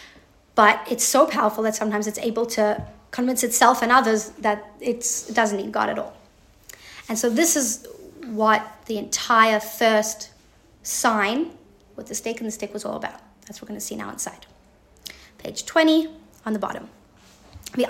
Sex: female